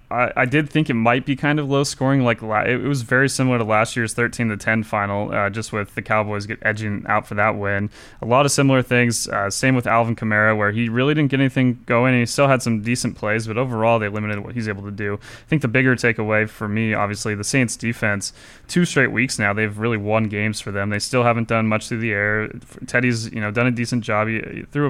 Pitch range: 105-125 Hz